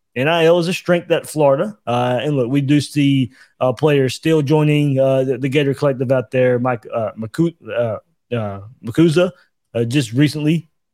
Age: 20-39